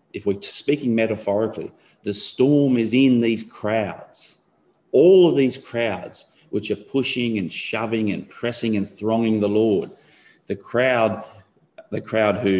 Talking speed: 145 wpm